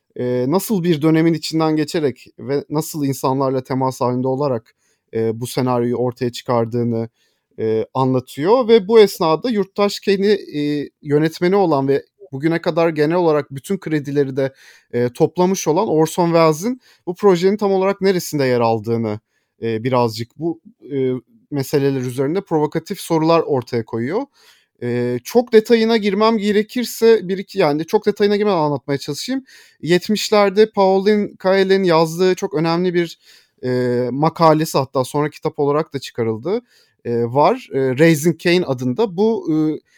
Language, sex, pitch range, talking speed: Turkish, male, 135-195 Hz, 130 wpm